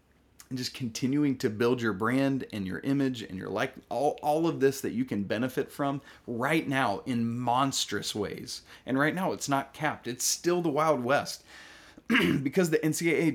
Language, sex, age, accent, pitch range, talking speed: English, male, 30-49, American, 110-150 Hz, 185 wpm